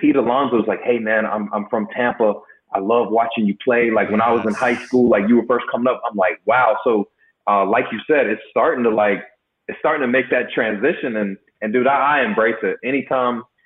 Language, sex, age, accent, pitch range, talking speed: English, male, 30-49, American, 110-130 Hz, 240 wpm